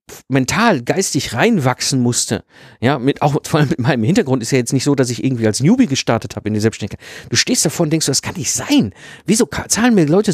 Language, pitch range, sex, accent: German, 135-210 Hz, male, German